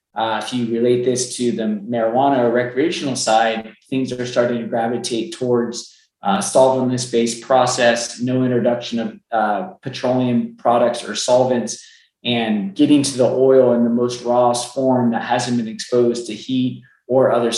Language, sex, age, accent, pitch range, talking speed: English, male, 20-39, American, 115-135 Hz, 155 wpm